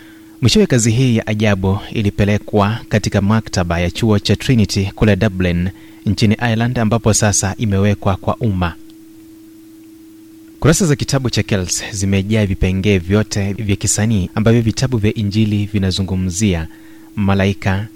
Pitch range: 100-115 Hz